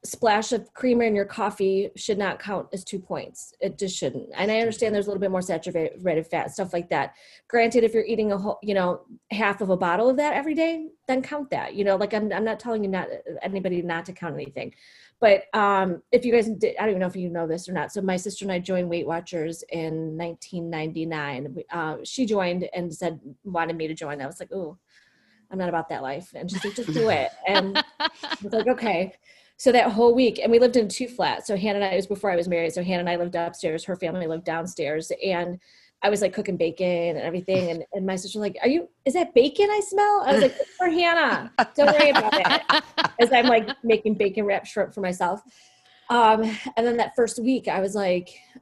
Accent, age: American, 20-39